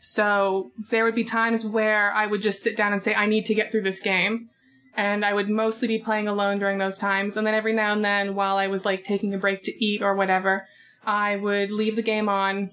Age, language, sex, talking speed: 20-39, English, female, 250 wpm